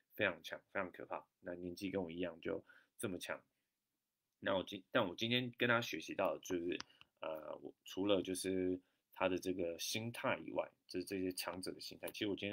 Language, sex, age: Chinese, male, 20-39